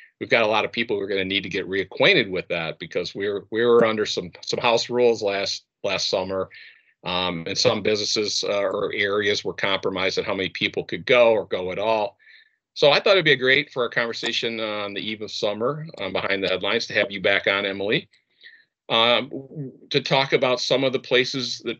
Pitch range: 95-135 Hz